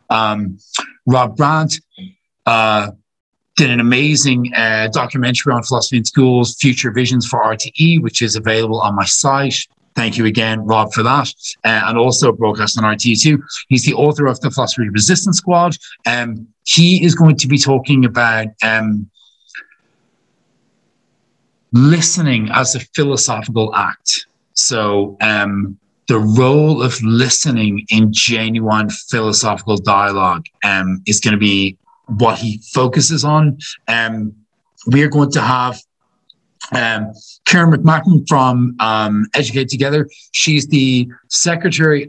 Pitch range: 110-140 Hz